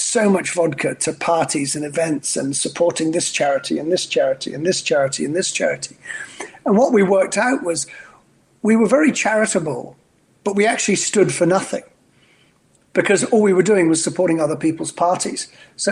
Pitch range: 150-195 Hz